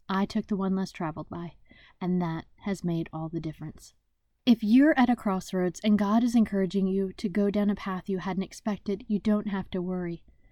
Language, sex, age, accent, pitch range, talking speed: English, female, 20-39, American, 180-230 Hz, 210 wpm